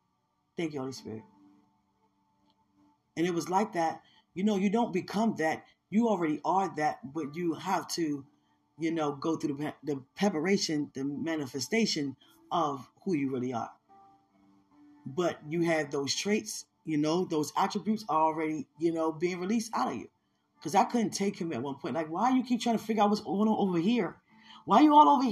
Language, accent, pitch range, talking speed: English, American, 110-175 Hz, 190 wpm